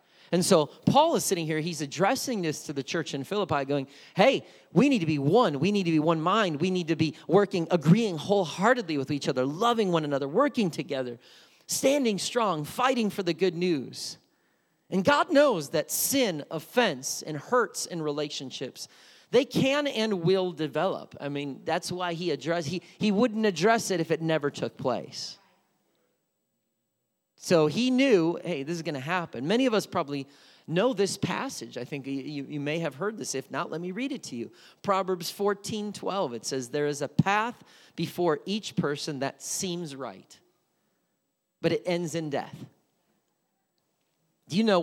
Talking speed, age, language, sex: 180 wpm, 30-49, English, male